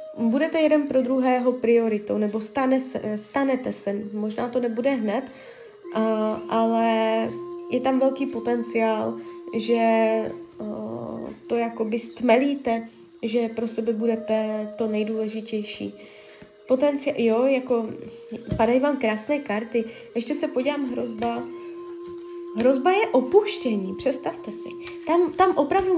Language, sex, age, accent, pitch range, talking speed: Czech, female, 20-39, native, 230-295 Hz, 105 wpm